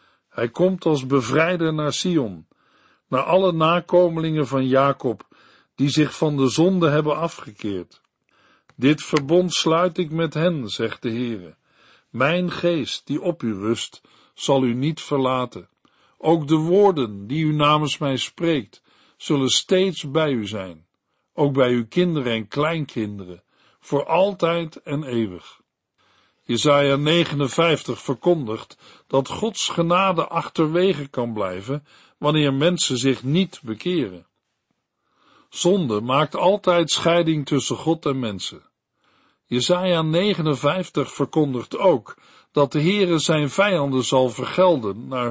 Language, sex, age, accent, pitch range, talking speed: Dutch, male, 50-69, Dutch, 130-165 Hz, 125 wpm